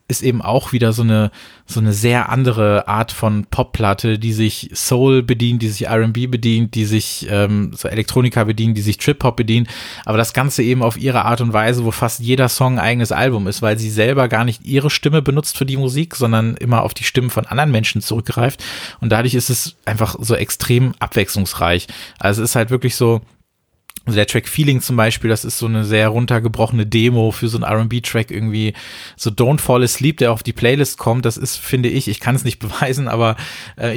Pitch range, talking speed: 105-125 Hz, 215 wpm